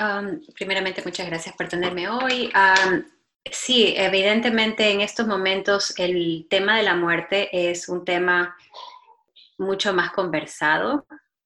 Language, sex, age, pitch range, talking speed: Spanish, female, 20-39, 175-210 Hz, 125 wpm